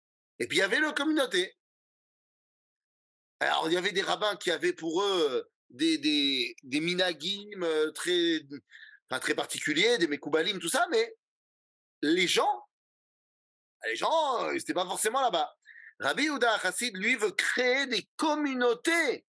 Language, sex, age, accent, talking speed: French, male, 30-49, French, 145 wpm